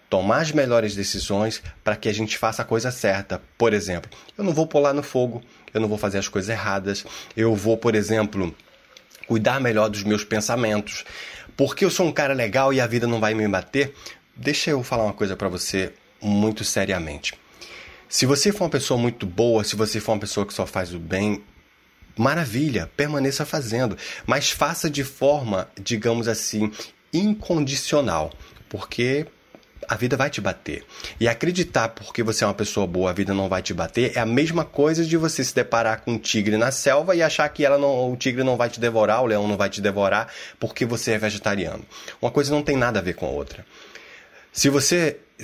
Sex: male